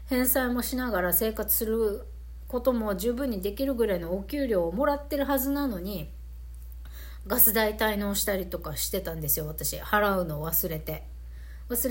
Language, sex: Japanese, female